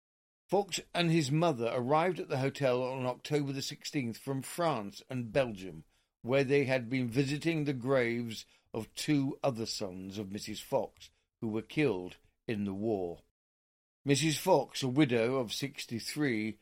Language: English